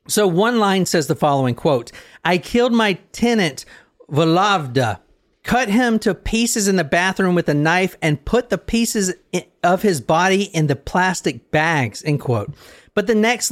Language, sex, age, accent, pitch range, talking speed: English, male, 40-59, American, 150-205 Hz, 170 wpm